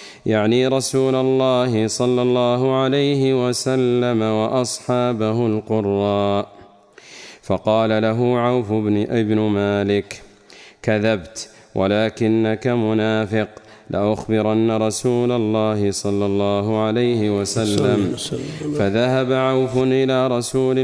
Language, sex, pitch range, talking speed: Arabic, male, 105-125 Hz, 85 wpm